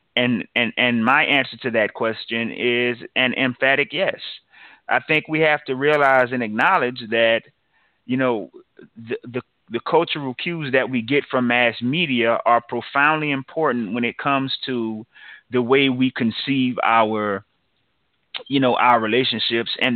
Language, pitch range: English, 115-135 Hz